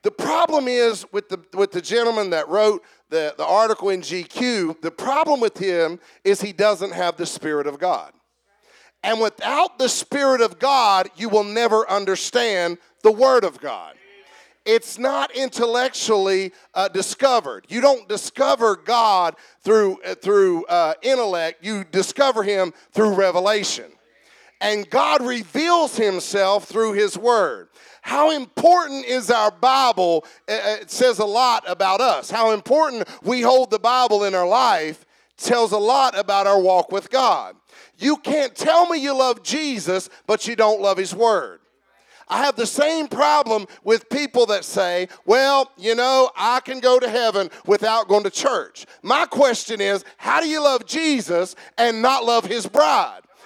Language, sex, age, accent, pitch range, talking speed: English, male, 50-69, American, 195-265 Hz, 160 wpm